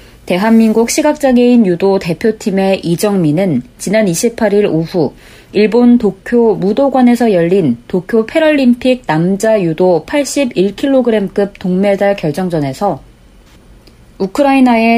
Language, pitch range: Korean, 180-240 Hz